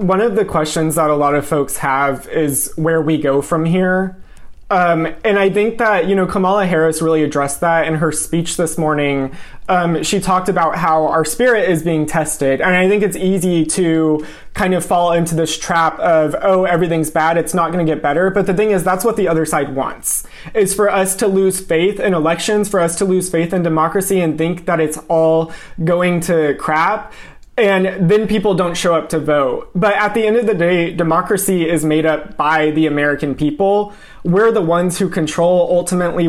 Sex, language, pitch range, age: male, English, 160-195 Hz, 20-39